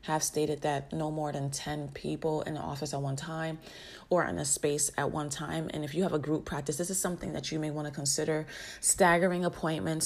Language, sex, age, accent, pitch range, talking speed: English, female, 30-49, American, 155-190 Hz, 235 wpm